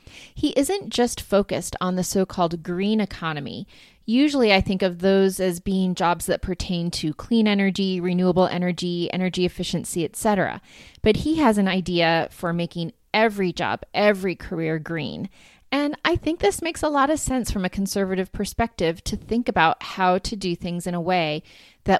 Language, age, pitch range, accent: English, 30-49, 175-215 Hz, American